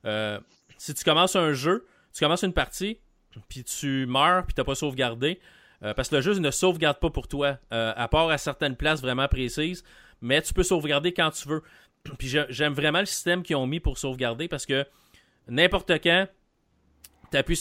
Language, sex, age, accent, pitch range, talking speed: French, male, 30-49, Canadian, 120-150 Hz, 195 wpm